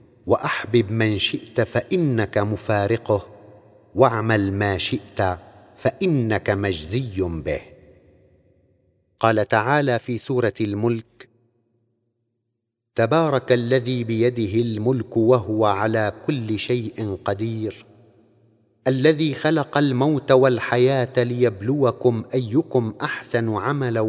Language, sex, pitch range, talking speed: Arabic, male, 105-130 Hz, 80 wpm